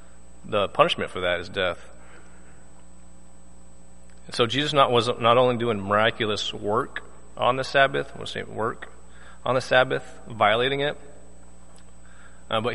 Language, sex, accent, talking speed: English, male, American, 130 wpm